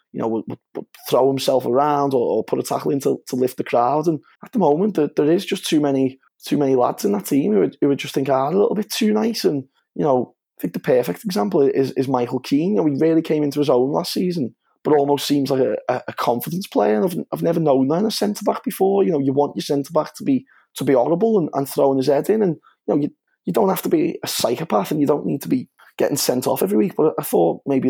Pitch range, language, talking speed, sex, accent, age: 130-160 Hz, English, 280 wpm, male, British, 20-39